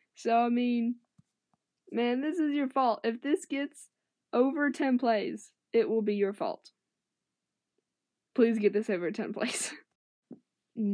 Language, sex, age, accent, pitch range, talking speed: English, female, 10-29, American, 180-250 Hz, 135 wpm